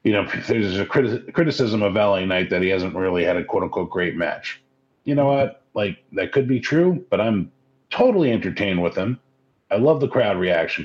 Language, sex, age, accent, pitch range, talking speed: English, male, 40-59, American, 95-130 Hz, 210 wpm